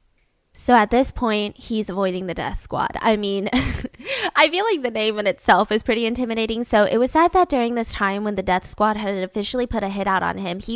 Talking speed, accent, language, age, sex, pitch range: 235 wpm, American, English, 10-29, female, 200-270 Hz